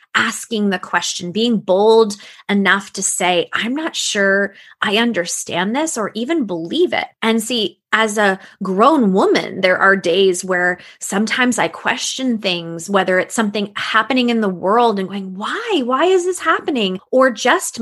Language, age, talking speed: English, 20-39, 160 wpm